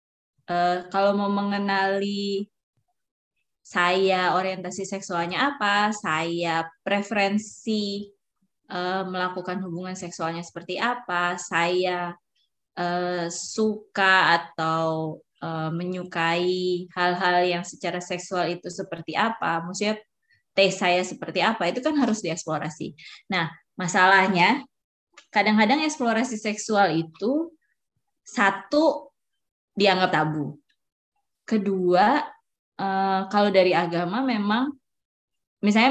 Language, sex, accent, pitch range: Indonesian, female, native, 170-210 Hz